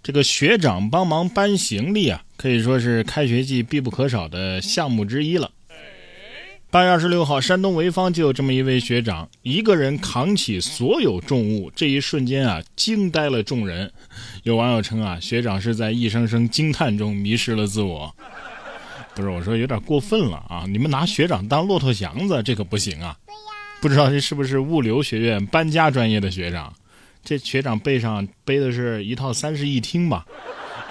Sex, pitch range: male, 115-155 Hz